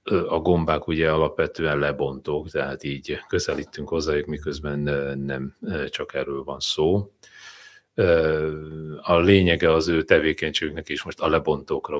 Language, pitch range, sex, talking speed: Hungarian, 70-100 Hz, male, 125 wpm